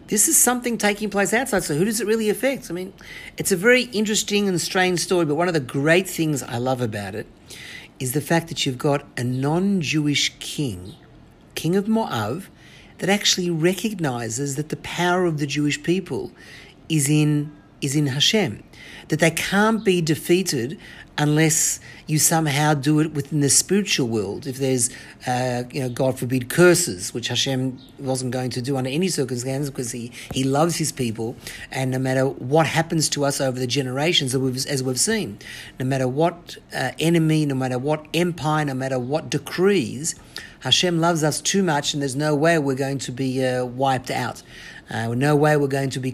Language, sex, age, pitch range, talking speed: English, male, 50-69, 130-165 Hz, 185 wpm